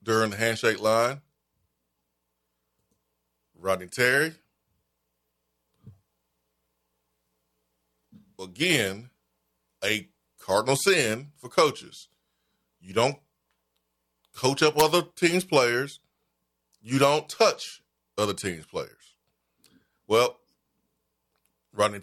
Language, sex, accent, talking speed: English, male, American, 75 wpm